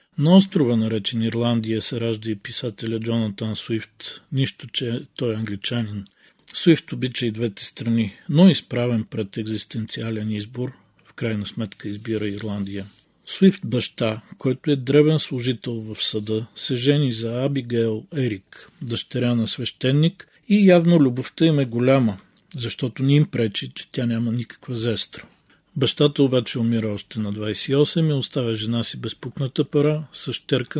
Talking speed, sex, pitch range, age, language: 145 wpm, male, 115-140 Hz, 40-59, Bulgarian